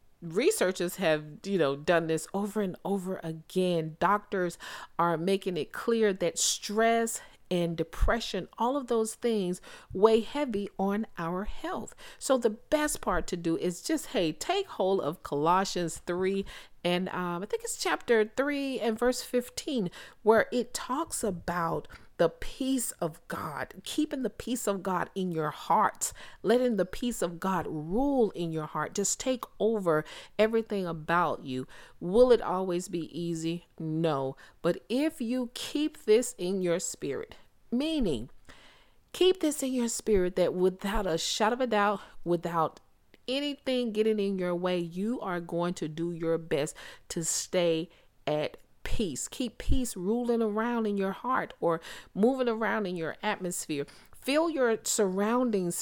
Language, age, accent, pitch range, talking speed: English, 40-59, American, 170-240 Hz, 155 wpm